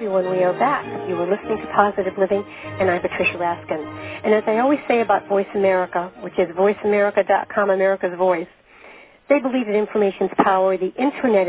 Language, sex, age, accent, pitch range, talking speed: English, female, 50-69, American, 180-205 Hz, 180 wpm